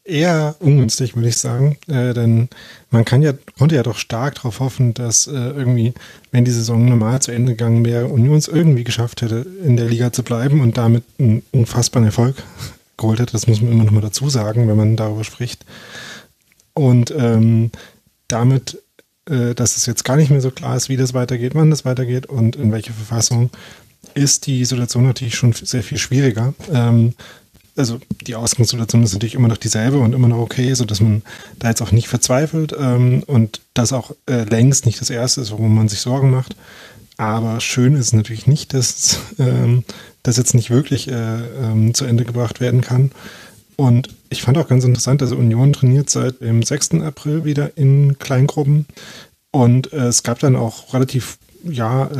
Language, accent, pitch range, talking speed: German, German, 115-130 Hz, 190 wpm